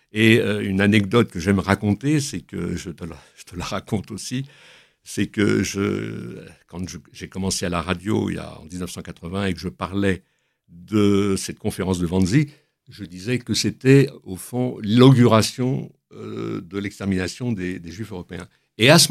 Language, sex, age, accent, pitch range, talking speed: French, male, 60-79, French, 95-120 Hz, 180 wpm